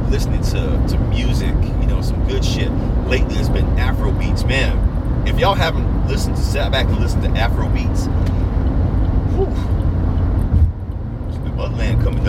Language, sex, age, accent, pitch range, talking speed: English, male, 40-59, American, 105-115 Hz, 145 wpm